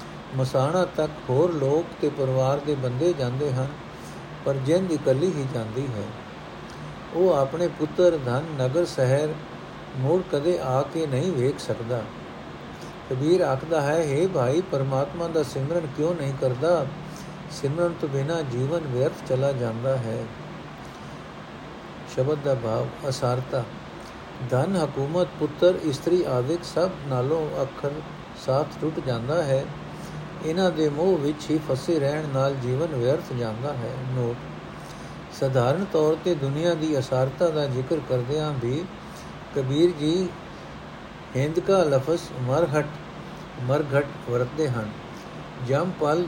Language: Punjabi